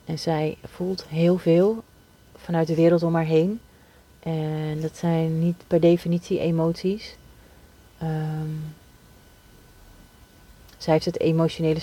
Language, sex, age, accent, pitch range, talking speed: Dutch, female, 30-49, Dutch, 150-170 Hz, 115 wpm